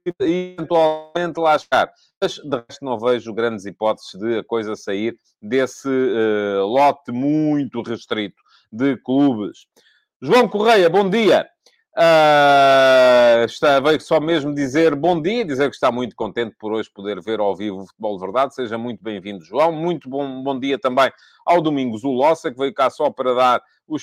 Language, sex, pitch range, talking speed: Portuguese, male, 130-175 Hz, 165 wpm